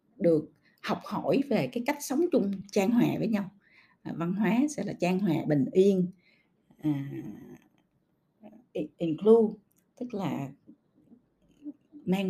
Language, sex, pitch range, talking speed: Vietnamese, female, 170-245 Hz, 120 wpm